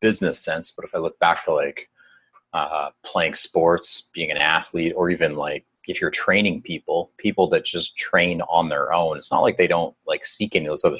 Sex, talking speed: male, 220 wpm